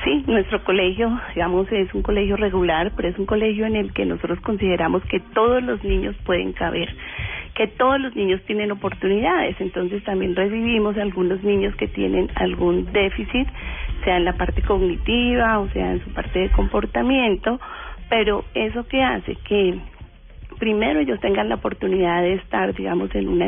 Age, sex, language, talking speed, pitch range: 40-59, female, Spanish, 165 wpm, 175-220 Hz